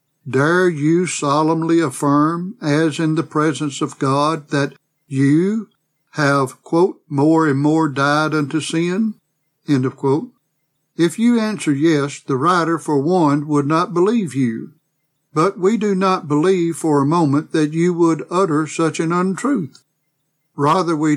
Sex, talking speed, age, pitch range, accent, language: male, 145 wpm, 60-79, 145-170 Hz, American, English